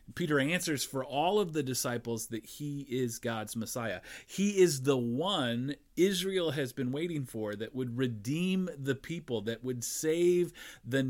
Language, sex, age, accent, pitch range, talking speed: English, male, 40-59, American, 125-170 Hz, 160 wpm